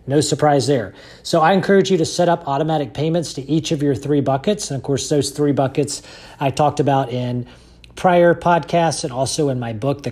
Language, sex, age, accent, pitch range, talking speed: English, male, 40-59, American, 140-170 Hz, 215 wpm